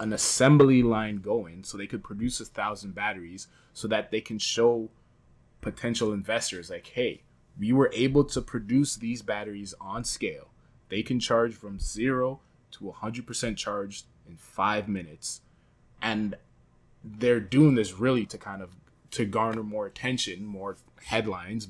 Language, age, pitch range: English, 20-39, 100-120 Hz